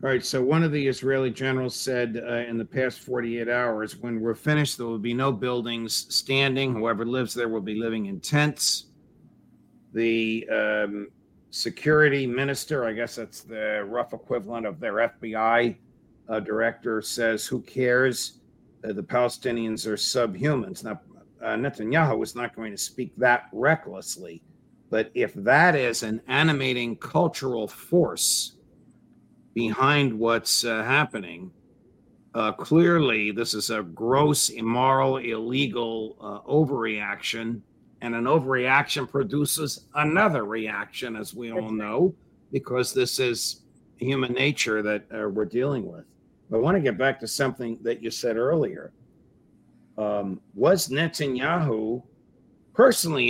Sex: male